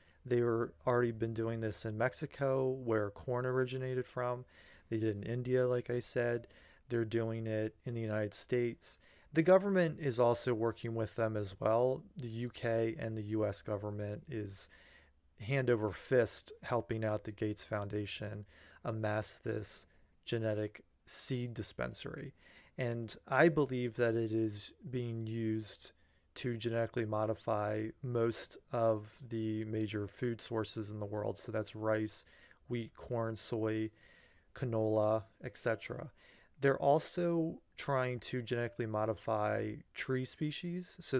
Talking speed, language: 135 wpm, English